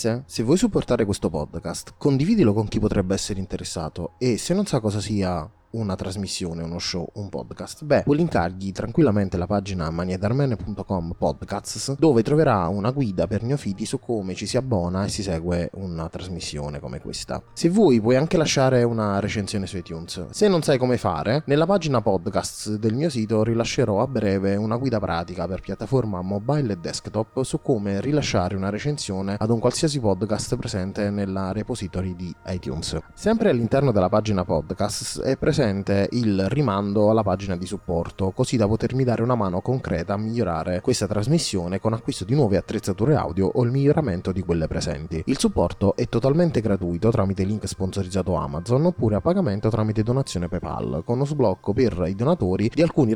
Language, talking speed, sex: Italian, 175 wpm, male